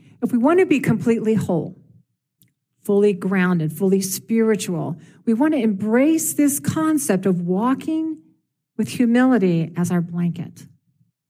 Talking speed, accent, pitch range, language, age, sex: 125 wpm, American, 165-245 Hz, English, 50-69, female